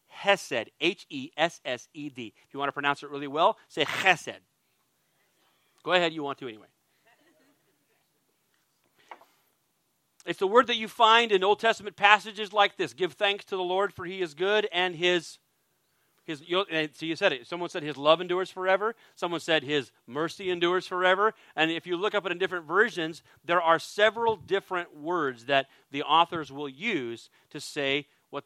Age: 40-59